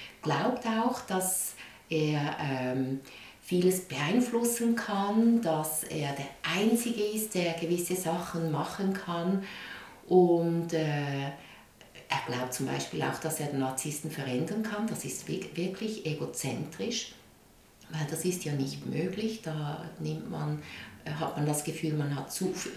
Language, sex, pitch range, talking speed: German, female, 150-195 Hz, 140 wpm